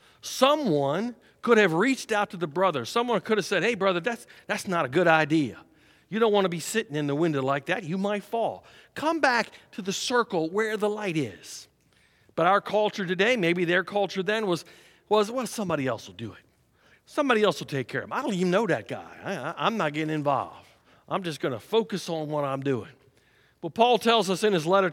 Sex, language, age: male, English, 50-69